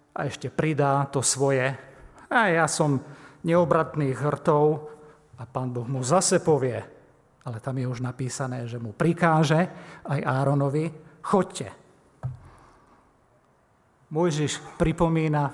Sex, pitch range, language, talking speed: male, 130-160 Hz, Slovak, 115 wpm